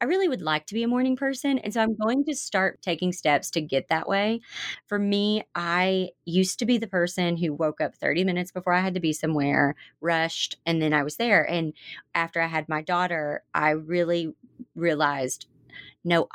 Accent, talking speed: American, 205 wpm